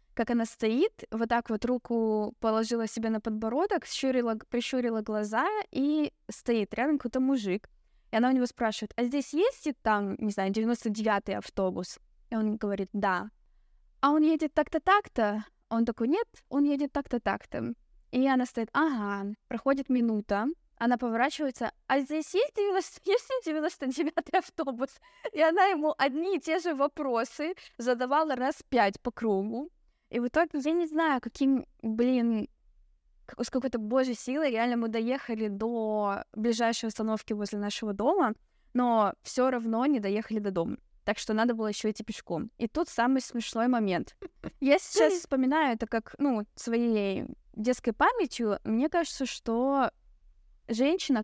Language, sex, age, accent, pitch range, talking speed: Russian, female, 20-39, native, 220-290 Hz, 150 wpm